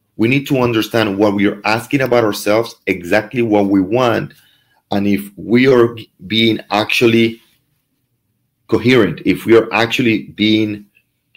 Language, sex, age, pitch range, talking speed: English, male, 40-59, 100-125 Hz, 135 wpm